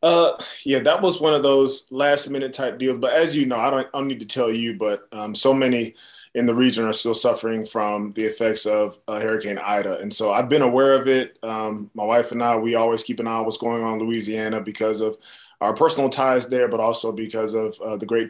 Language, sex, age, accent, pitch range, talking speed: English, male, 20-39, American, 110-130 Hz, 250 wpm